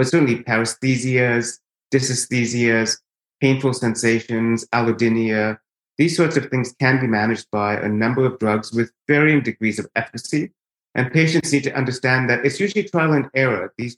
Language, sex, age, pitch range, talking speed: English, male, 30-49, 115-140 Hz, 155 wpm